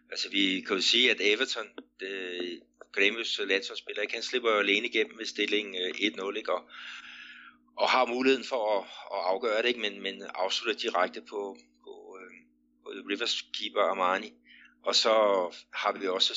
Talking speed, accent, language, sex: 160 wpm, native, Danish, male